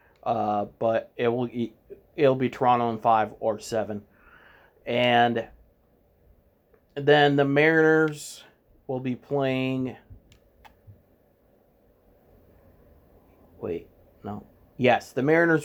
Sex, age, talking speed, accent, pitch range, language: male, 30-49, 90 wpm, American, 115-145 Hz, English